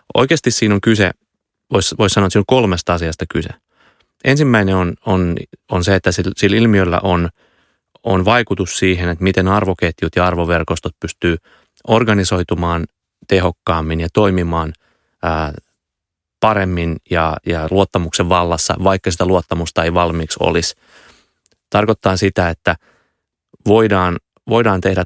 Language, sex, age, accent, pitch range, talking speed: Finnish, male, 30-49, native, 85-100 Hz, 120 wpm